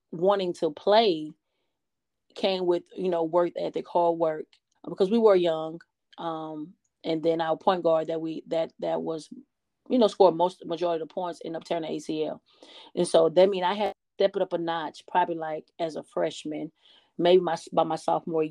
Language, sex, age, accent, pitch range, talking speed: English, female, 30-49, American, 165-190 Hz, 200 wpm